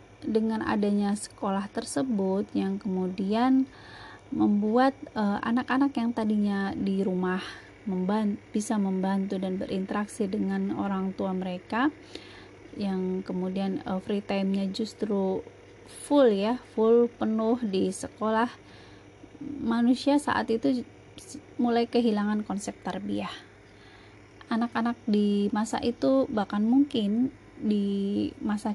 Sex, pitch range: female, 195-240 Hz